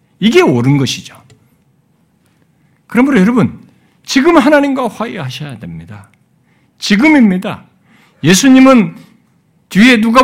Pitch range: 205-285 Hz